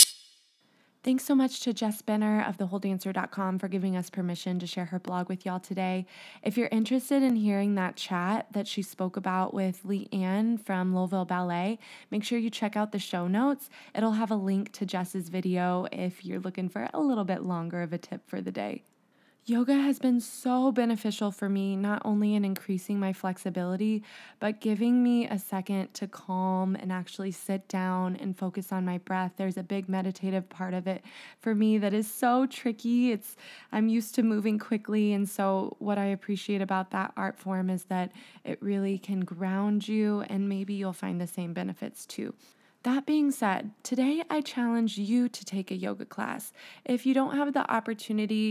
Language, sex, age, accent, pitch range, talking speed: English, female, 20-39, American, 190-230 Hz, 190 wpm